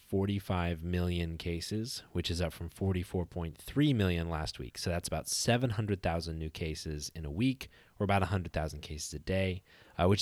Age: 30-49